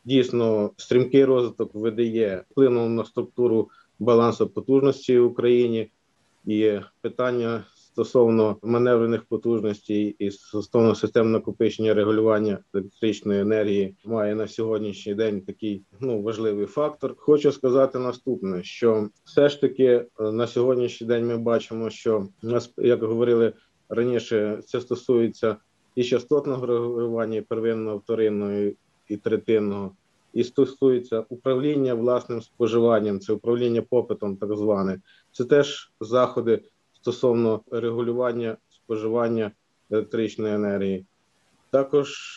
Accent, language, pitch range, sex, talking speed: native, Ukrainian, 110-125 Hz, male, 105 wpm